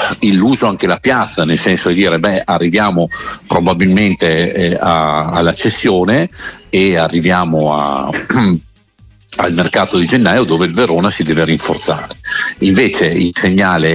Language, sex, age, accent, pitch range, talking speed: Italian, male, 50-69, native, 80-90 Hz, 140 wpm